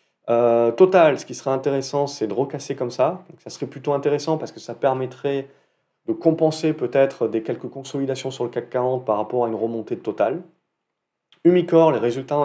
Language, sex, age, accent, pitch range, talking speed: French, male, 30-49, French, 120-145 Hz, 195 wpm